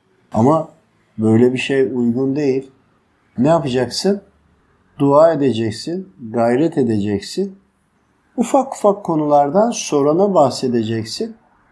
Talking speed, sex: 85 wpm, male